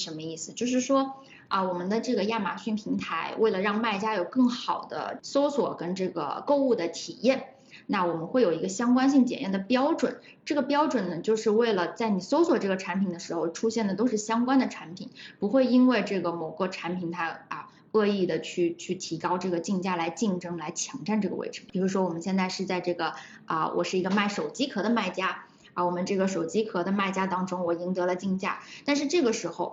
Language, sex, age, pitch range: Chinese, female, 20-39, 180-245 Hz